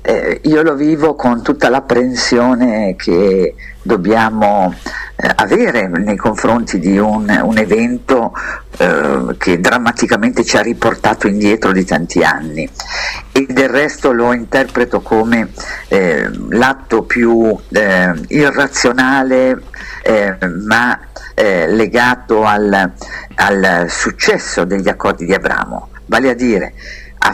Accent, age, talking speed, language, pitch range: native, 50-69, 115 wpm, Italian, 95-125 Hz